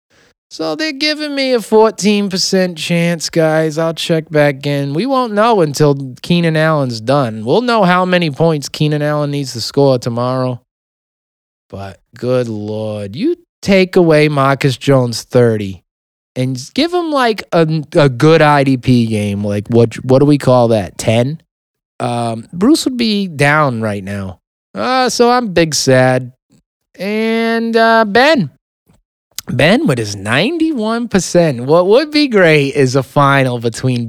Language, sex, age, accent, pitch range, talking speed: English, male, 20-39, American, 115-190 Hz, 145 wpm